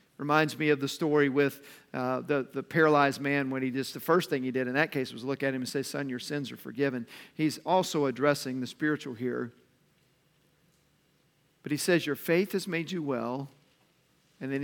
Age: 50-69